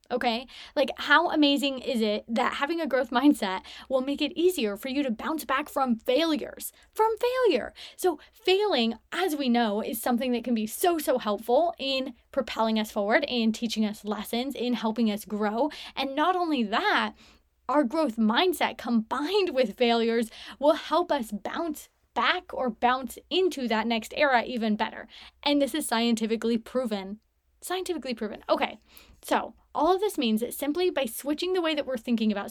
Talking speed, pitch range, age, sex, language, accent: 175 wpm, 225-295 Hz, 10-29, female, English, American